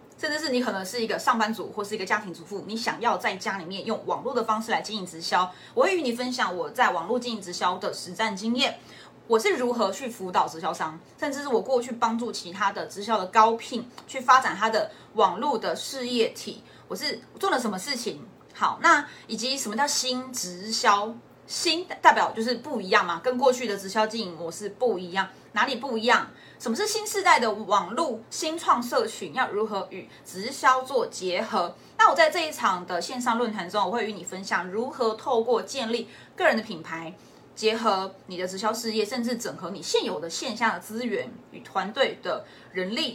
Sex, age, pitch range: female, 20-39, 205-260 Hz